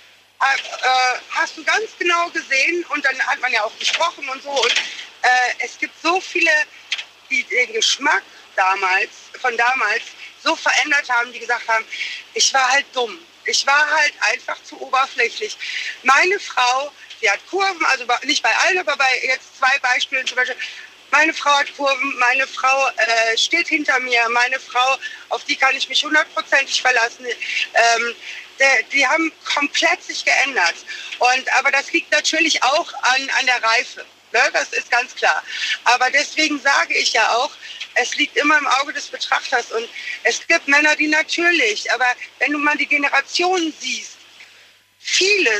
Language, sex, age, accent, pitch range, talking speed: German, female, 50-69, German, 250-330 Hz, 165 wpm